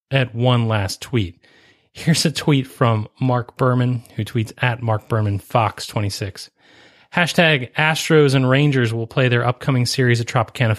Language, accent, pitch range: English, American, 110-130 Hz